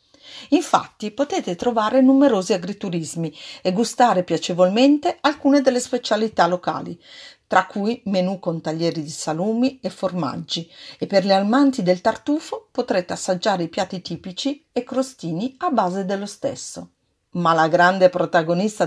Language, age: Italian, 50-69